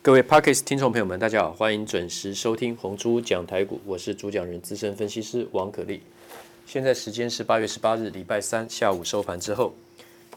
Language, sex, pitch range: Chinese, male, 100-120 Hz